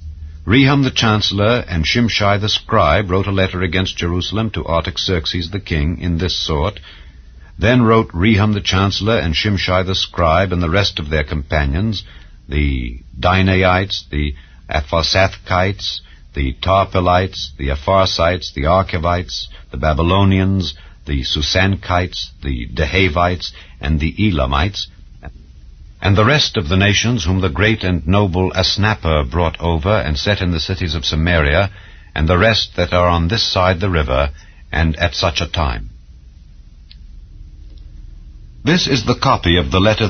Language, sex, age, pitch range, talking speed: English, male, 60-79, 75-100 Hz, 145 wpm